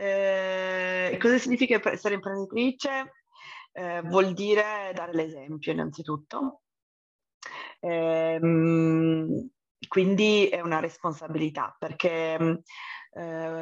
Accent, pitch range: native, 165-200 Hz